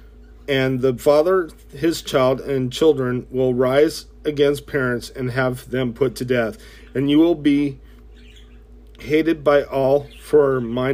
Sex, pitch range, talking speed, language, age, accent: male, 120-150 Hz, 145 wpm, English, 40-59, American